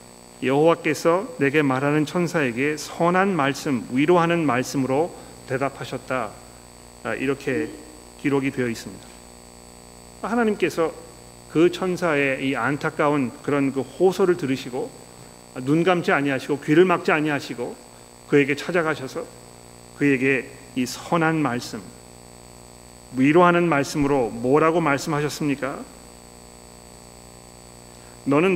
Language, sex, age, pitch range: Korean, male, 40-59, 120-170 Hz